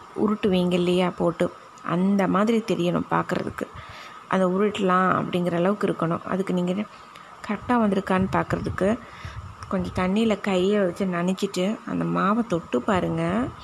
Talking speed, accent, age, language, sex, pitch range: 115 wpm, native, 20-39, Tamil, female, 175-210 Hz